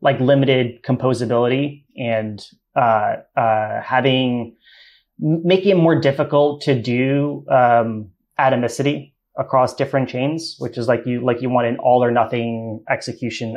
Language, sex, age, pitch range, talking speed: English, male, 30-49, 115-135 Hz, 135 wpm